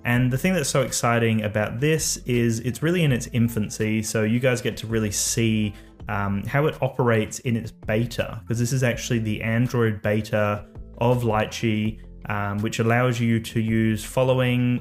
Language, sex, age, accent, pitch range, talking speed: English, male, 20-39, Australian, 105-125 Hz, 175 wpm